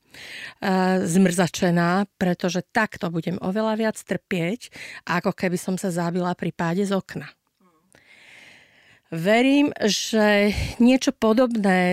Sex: female